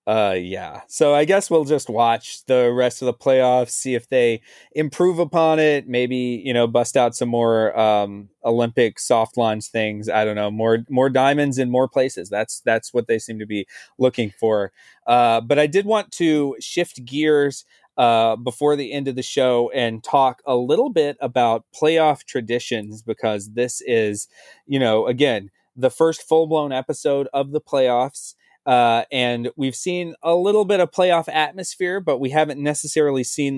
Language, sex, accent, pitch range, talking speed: English, male, American, 120-150 Hz, 180 wpm